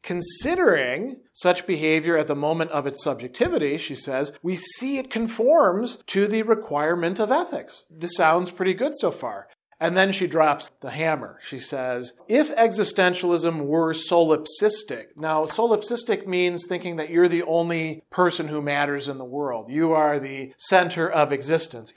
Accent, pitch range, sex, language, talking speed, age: American, 145-180 Hz, male, English, 160 wpm, 40-59